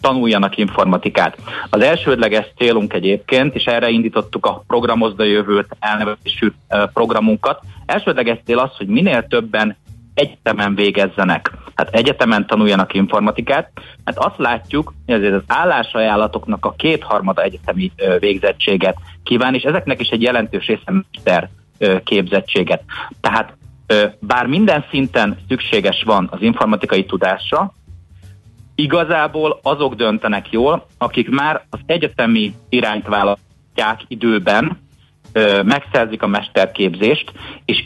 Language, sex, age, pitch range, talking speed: Hungarian, male, 30-49, 100-130 Hz, 110 wpm